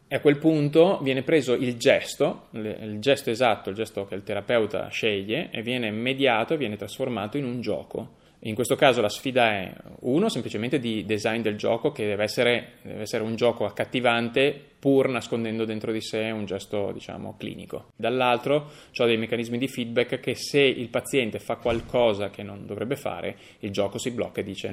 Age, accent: 20-39, native